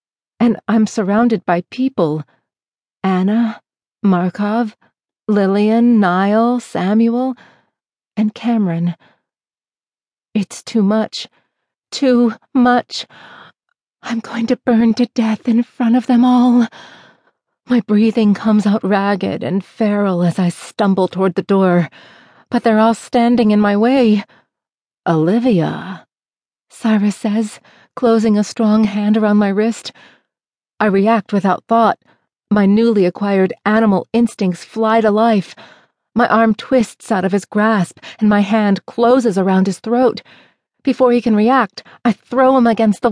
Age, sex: 40-59, female